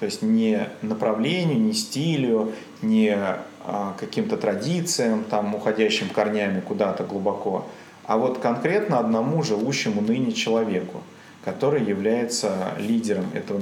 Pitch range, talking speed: 105-160 Hz, 110 wpm